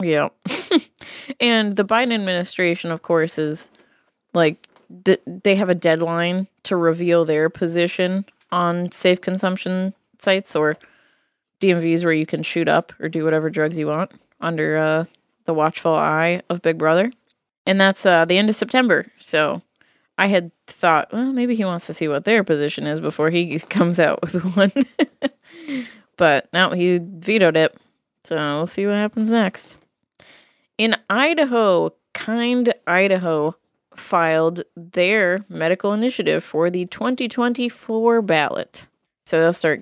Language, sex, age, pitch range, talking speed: English, female, 20-39, 165-210 Hz, 145 wpm